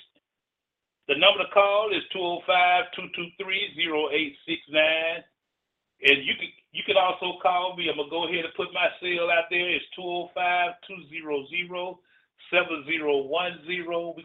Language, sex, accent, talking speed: English, male, American, 120 wpm